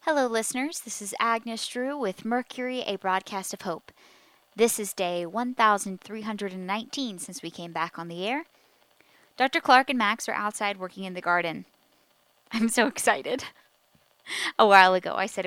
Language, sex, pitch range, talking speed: English, female, 195-250 Hz, 160 wpm